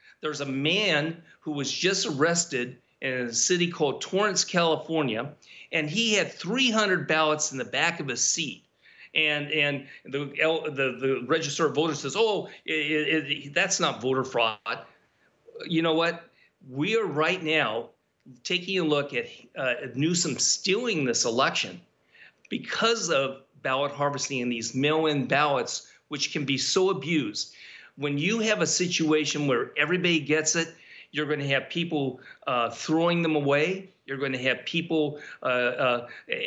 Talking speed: 155 wpm